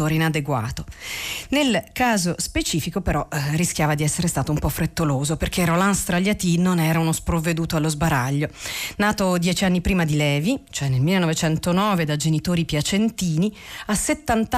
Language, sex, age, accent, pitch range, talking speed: Italian, female, 40-59, native, 160-210 Hz, 150 wpm